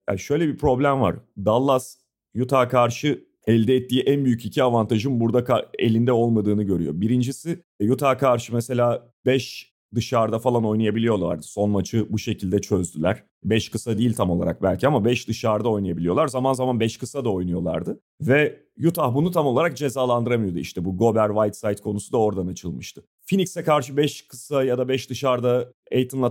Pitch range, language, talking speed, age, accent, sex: 105-130 Hz, Turkish, 160 wpm, 40-59, native, male